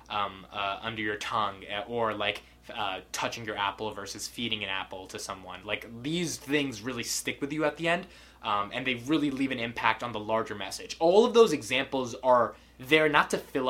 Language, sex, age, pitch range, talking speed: English, male, 20-39, 110-150 Hz, 205 wpm